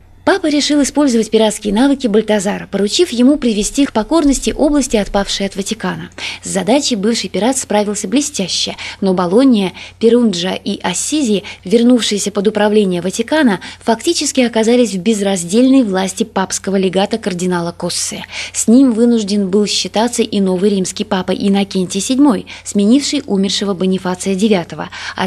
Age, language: 20-39, Russian